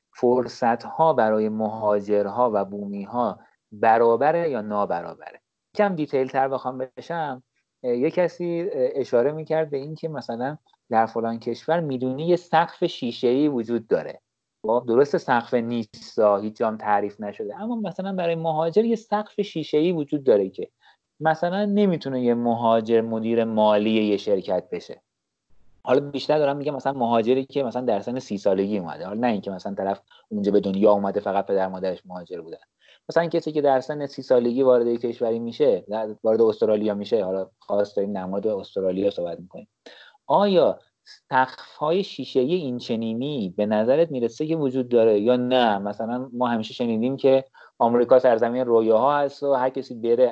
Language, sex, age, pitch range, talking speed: Persian, male, 30-49, 110-155 Hz, 160 wpm